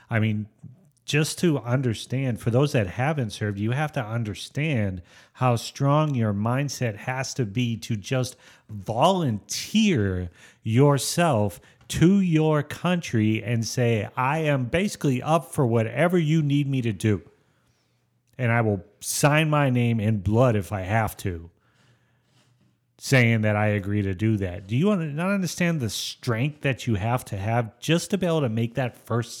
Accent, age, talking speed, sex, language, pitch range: American, 40-59, 160 wpm, male, English, 110-140 Hz